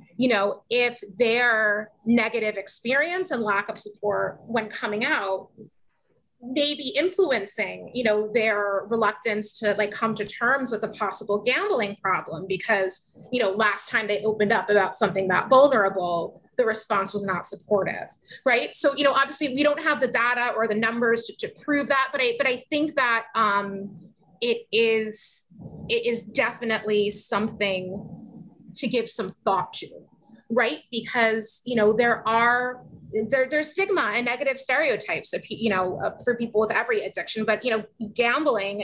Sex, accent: female, American